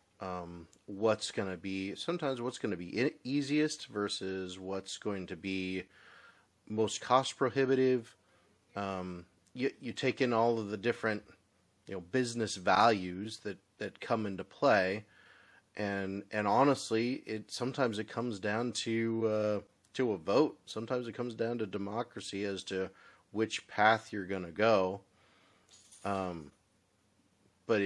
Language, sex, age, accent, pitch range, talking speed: English, male, 30-49, American, 95-115 Hz, 140 wpm